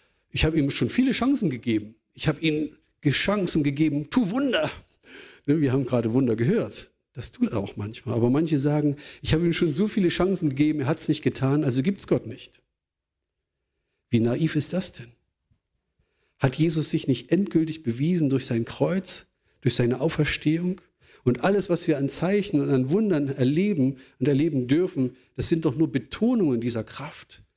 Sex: male